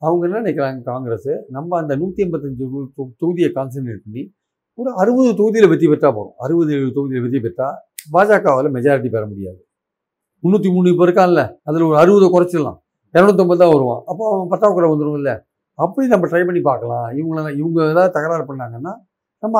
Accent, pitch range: native, 135-190 Hz